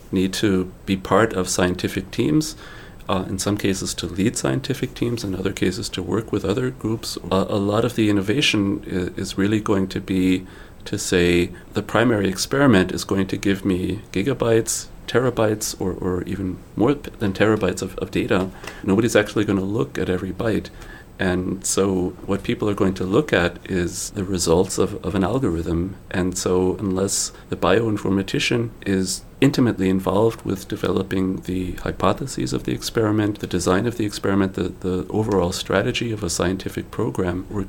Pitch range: 90-105 Hz